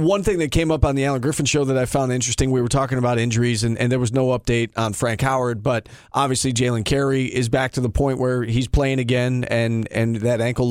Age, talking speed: 40-59, 250 wpm